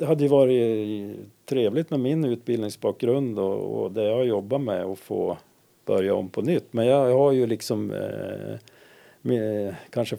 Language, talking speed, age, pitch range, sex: Swedish, 155 wpm, 50-69, 100-130 Hz, male